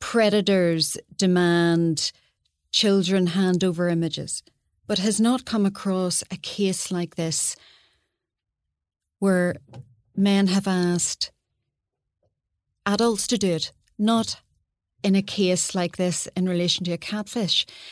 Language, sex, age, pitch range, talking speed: English, female, 40-59, 165-210 Hz, 115 wpm